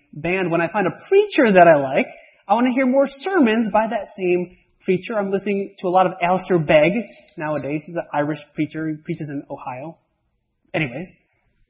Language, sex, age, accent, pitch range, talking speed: English, male, 30-49, American, 165-275 Hz, 190 wpm